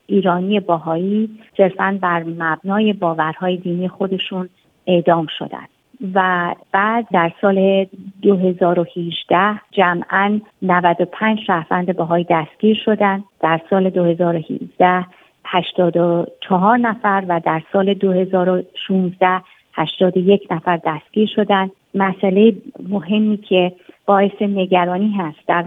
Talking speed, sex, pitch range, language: 95 wpm, female, 175-200 Hz, Persian